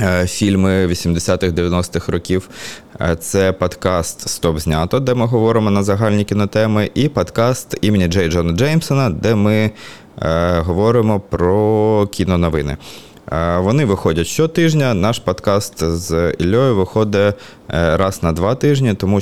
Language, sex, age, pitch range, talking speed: Ukrainian, male, 20-39, 85-105 Hz, 120 wpm